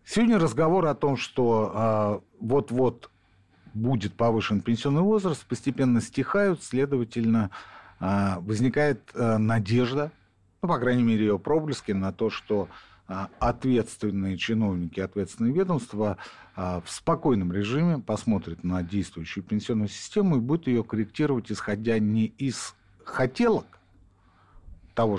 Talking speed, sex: 120 wpm, male